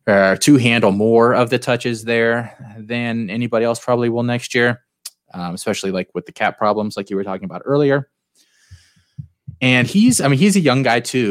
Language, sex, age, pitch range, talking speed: English, male, 20-39, 100-130 Hz, 195 wpm